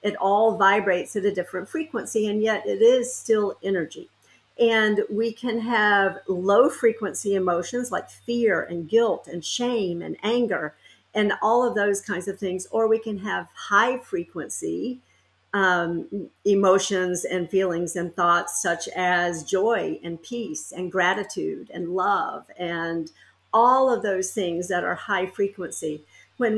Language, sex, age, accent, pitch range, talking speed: English, female, 50-69, American, 185-220 Hz, 140 wpm